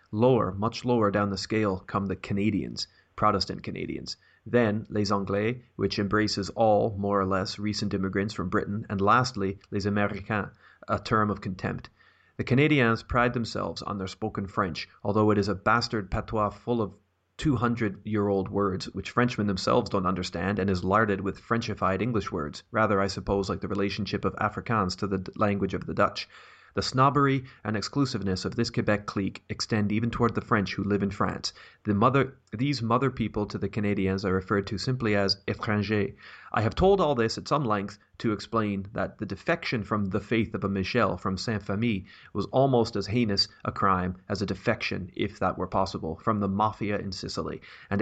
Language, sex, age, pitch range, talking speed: English, male, 30-49, 100-115 Hz, 180 wpm